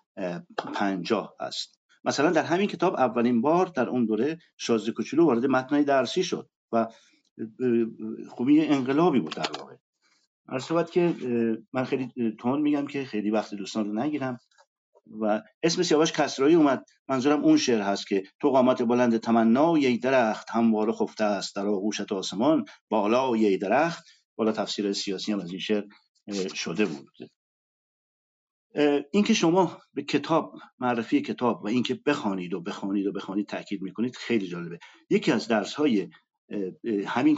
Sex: male